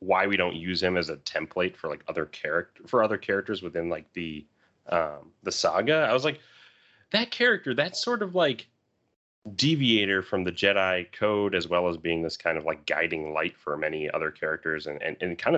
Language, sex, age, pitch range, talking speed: English, male, 30-49, 80-105 Hz, 205 wpm